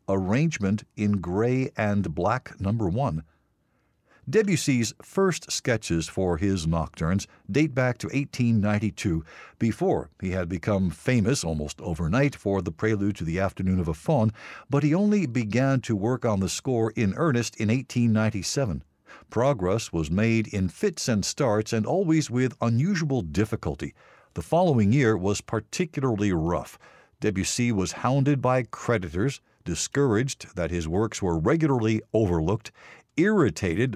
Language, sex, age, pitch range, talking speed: English, male, 60-79, 95-130 Hz, 135 wpm